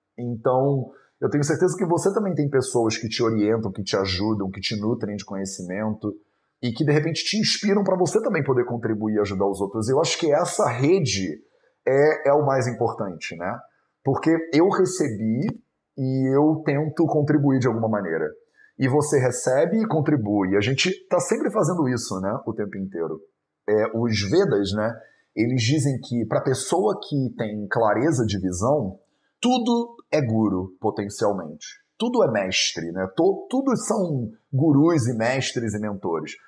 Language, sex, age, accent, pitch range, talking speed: Portuguese, male, 30-49, Brazilian, 110-155 Hz, 165 wpm